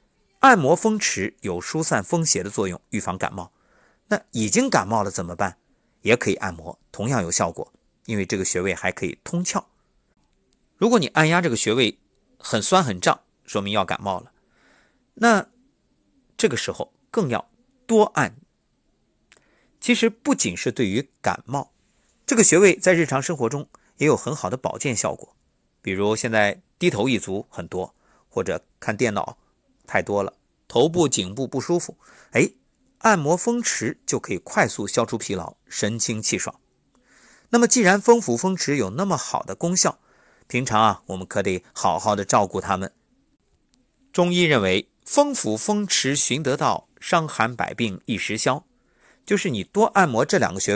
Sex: male